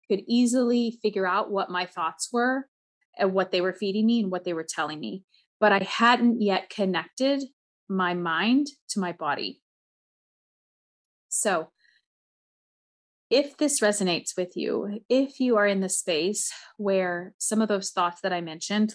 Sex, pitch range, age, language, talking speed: female, 180-220 Hz, 30-49, English, 160 wpm